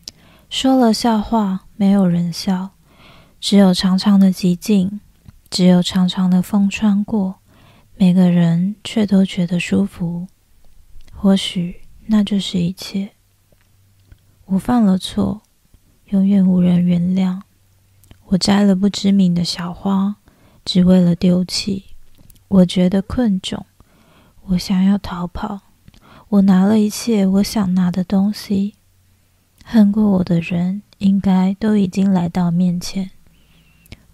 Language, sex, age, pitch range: Chinese, female, 20-39, 180-205 Hz